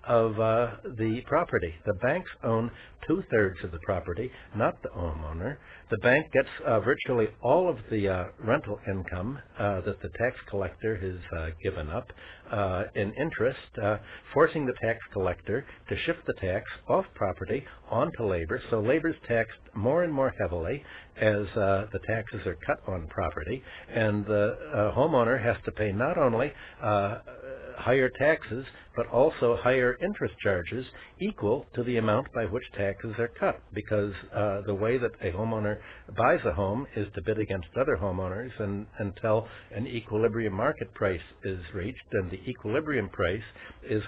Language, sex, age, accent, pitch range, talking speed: English, male, 60-79, American, 95-120 Hz, 160 wpm